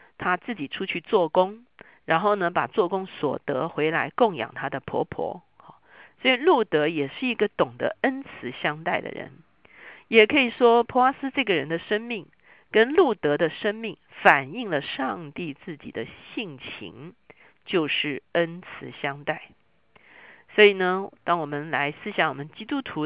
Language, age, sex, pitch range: Chinese, 50-69, female, 150-210 Hz